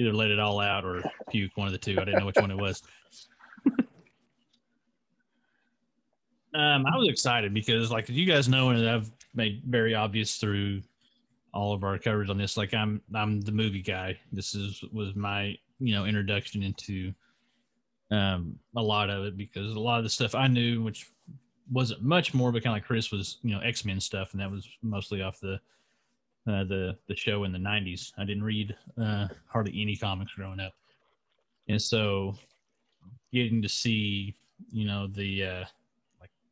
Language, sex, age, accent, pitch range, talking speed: English, male, 30-49, American, 100-115 Hz, 185 wpm